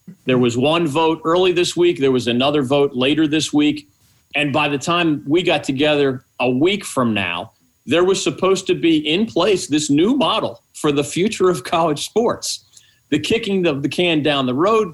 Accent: American